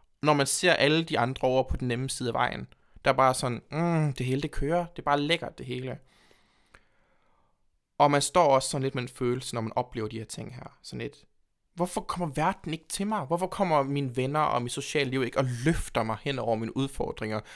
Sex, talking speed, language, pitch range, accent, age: male, 230 wpm, Danish, 120-150 Hz, native, 20-39